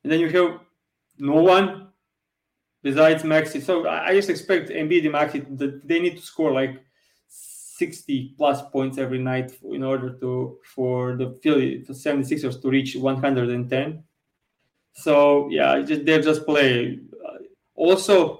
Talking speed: 145 wpm